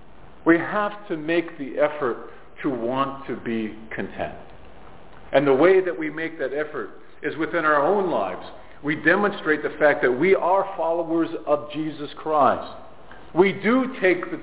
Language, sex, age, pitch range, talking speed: English, male, 50-69, 145-185 Hz, 160 wpm